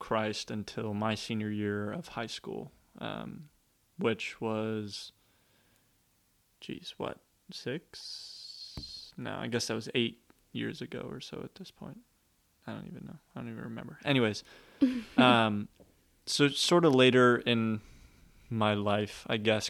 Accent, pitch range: American, 110-125 Hz